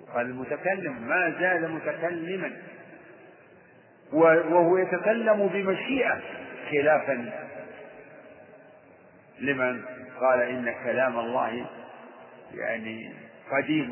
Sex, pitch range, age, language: male, 140-210 Hz, 50-69, Arabic